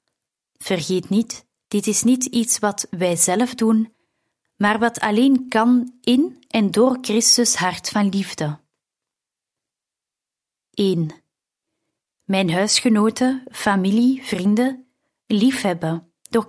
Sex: female